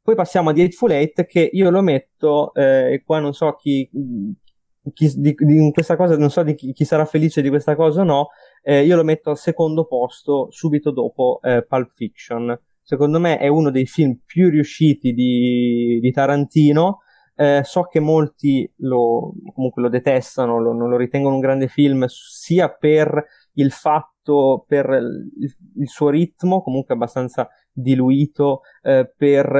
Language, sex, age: Italian, male, 20-39